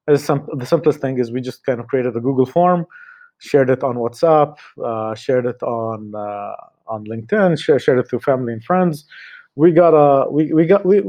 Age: 30-49